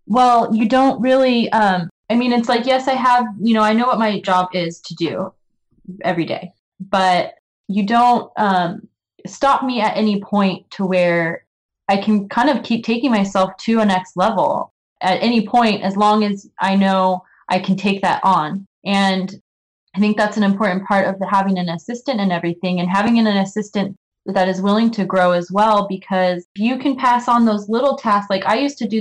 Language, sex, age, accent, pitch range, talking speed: English, female, 20-39, American, 190-225 Hz, 200 wpm